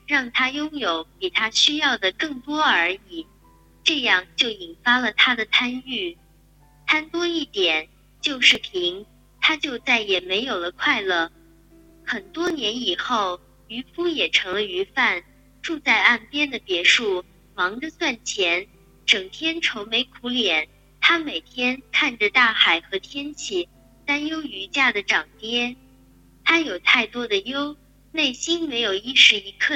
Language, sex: Chinese, male